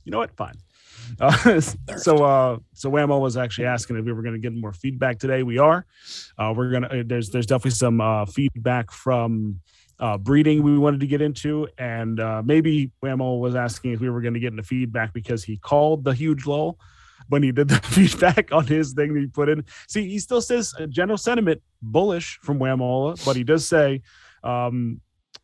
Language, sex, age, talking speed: English, male, 30-49, 205 wpm